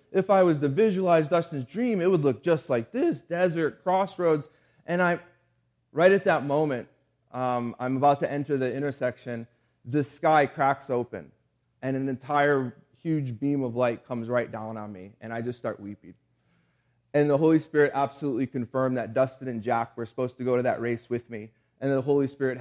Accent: American